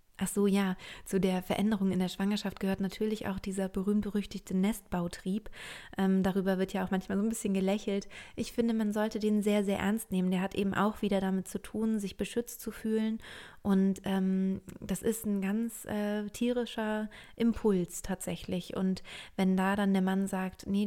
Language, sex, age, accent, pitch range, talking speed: German, female, 20-39, German, 185-210 Hz, 185 wpm